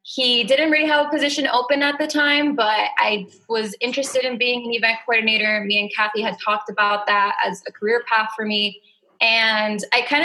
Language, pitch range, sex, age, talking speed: English, 210-255 Hz, female, 20-39, 205 wpm